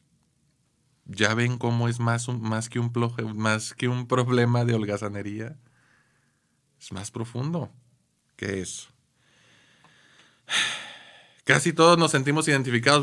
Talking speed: 120 wpm